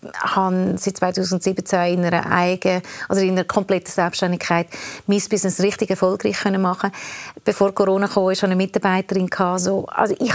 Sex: female